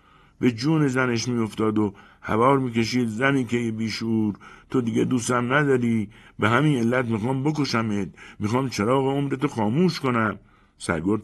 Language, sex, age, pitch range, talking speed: Persian, male, 60-79, 105-145 Hz, 140 wpm